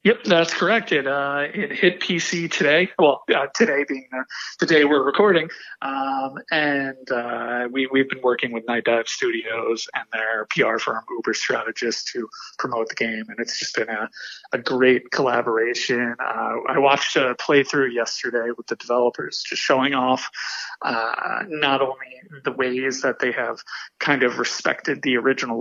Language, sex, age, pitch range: English, male, 30-49, 120-150 Hz